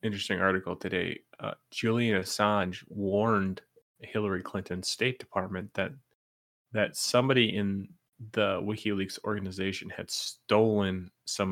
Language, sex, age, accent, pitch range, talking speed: English, male, 30-49, American, 95-105 Hz, 110 wpm